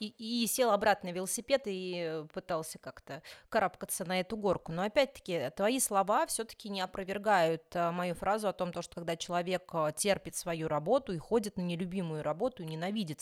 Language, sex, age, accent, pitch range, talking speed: Russian, female, 30-49, native, 165-205 Hz, 165 wpm